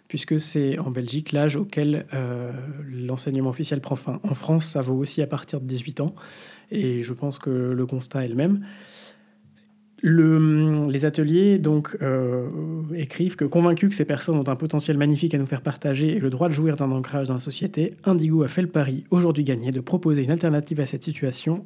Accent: French